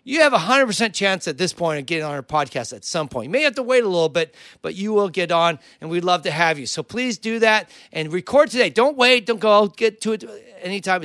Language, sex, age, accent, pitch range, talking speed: English, male, 40-59, American, 170-220 Hz, 270 wpm